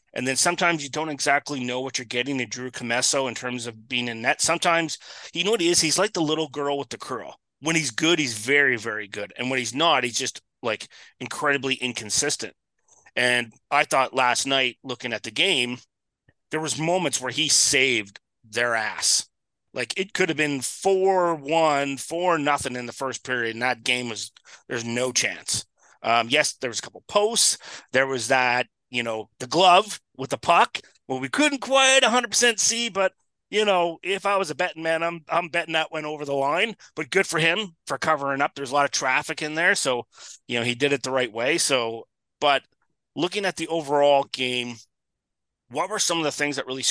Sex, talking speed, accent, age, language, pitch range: male, 205 wpm, American, 30-49, English, 125-165 Hz